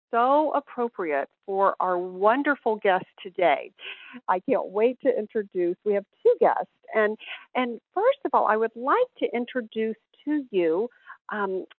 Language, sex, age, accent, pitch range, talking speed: English, female, 50-69, American, 190-280 Hz, 150 wpm